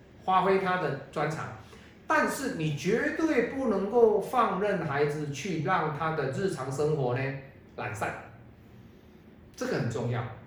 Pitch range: 120-175 Hz